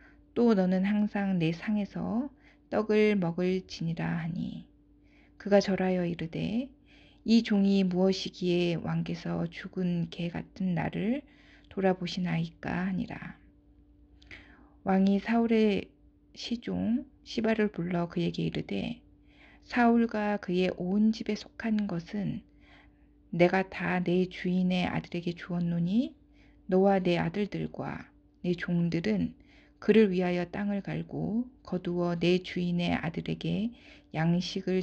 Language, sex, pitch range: Korean, female, 175-210 Hz